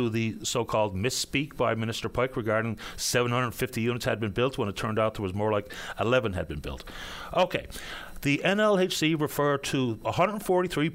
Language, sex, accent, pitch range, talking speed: English, male, American, 115-155 Hz, 170 wpm